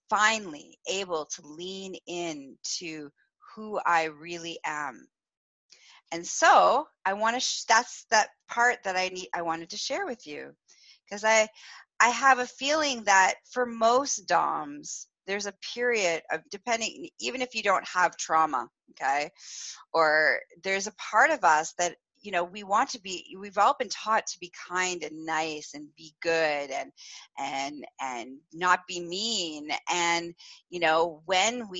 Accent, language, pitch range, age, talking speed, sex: American, English, 165-265 Hz, 30-49, 160 wpm, female